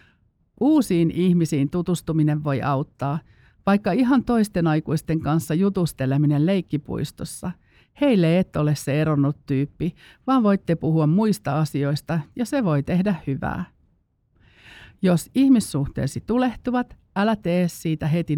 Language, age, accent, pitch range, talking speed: Finnish, 50-69, native, 140-180 Hz, 115 wpm